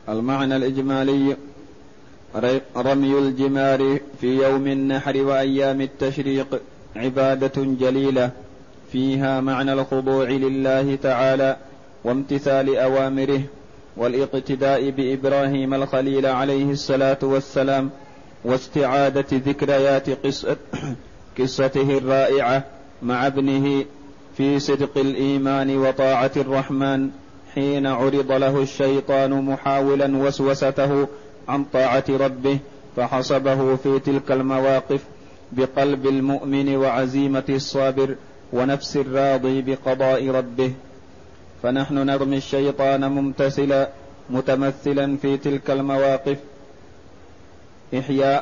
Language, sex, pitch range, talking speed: Arabic, male, 135-140 Hz, 80 wpm